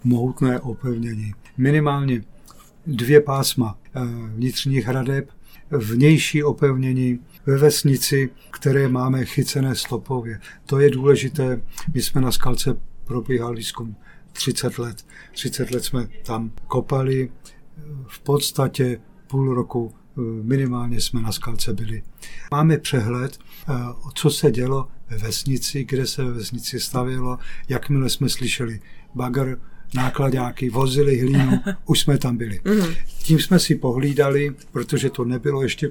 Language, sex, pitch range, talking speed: Czech, male, 120-140 Hz, 120 wpm